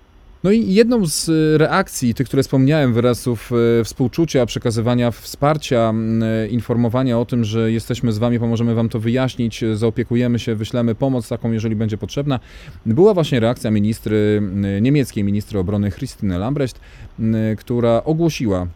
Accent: native